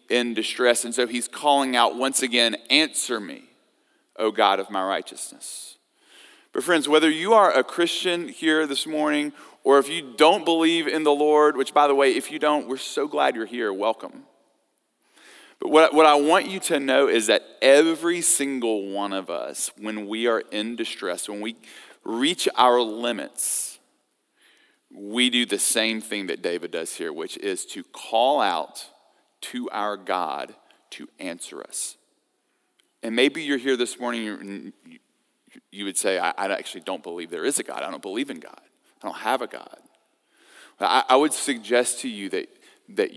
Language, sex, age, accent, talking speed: English, male, 40-59, American, 175 wpm